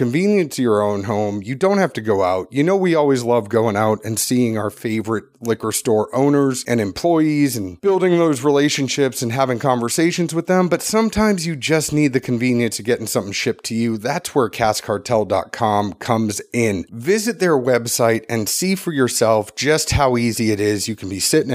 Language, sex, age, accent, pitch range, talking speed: English, male, 30-49, American, 110-150 Hz, 195 wpm